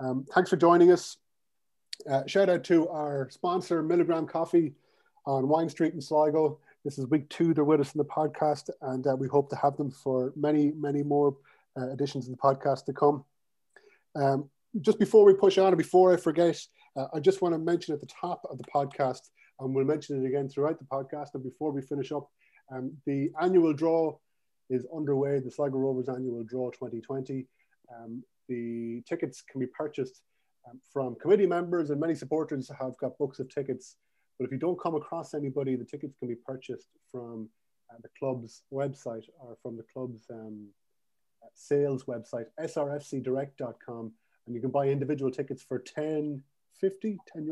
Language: English